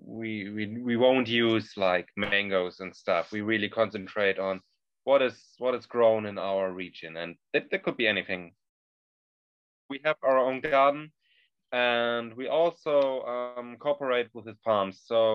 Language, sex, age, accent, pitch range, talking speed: English, male, 20-39, German, 105-125 Hz, 155 wpm